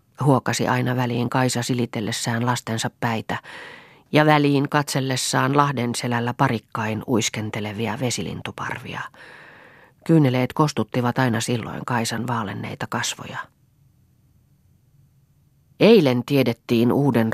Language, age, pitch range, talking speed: Finnish, 30-49, 115-140 Hz, 85 wpm